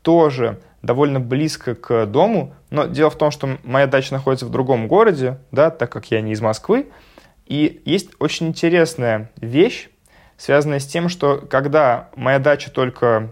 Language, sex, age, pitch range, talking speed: Russian, male, 20-39, 115-150 Hz, 160 wpm